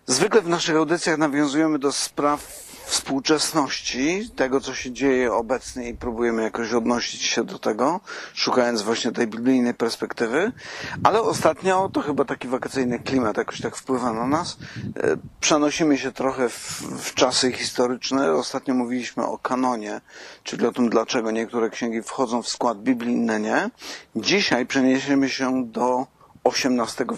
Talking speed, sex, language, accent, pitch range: 140 wpm, male, Polish, native, 115-140 Hz